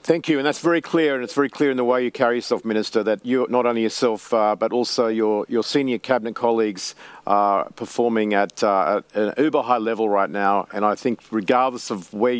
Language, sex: English, male